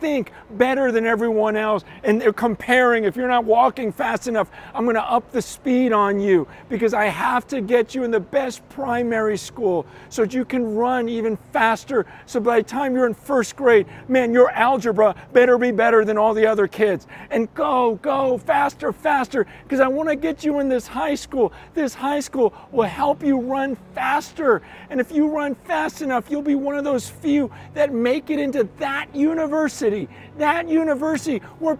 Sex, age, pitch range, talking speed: male, 40-59, 225-290 Hz, 190 wpm